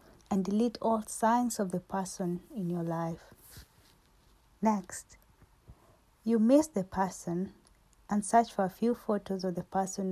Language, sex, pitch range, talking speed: English, female, 180-210 Hz, 140 wpm